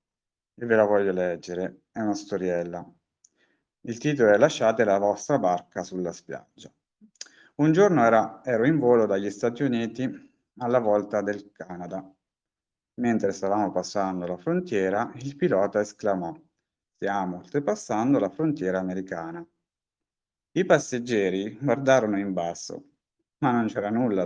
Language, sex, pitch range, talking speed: Italian, male, 95-120 Hz, 125 wpm